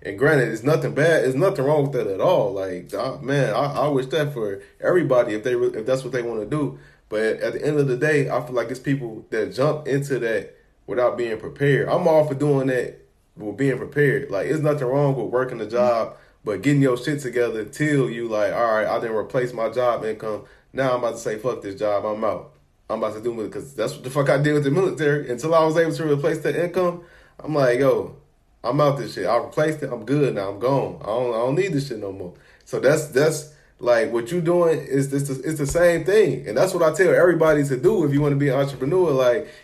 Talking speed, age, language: 255 wpm, 20-39, English